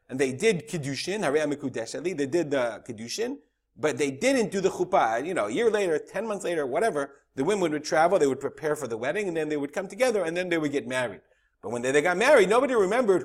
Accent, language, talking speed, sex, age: American, English, 240 wpm, male, 40-59